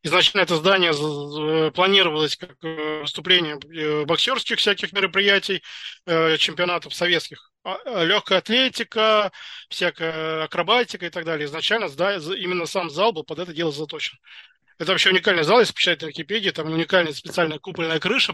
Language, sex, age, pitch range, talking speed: Russian, male, 20-39, 160-185 Hz, 130 wpm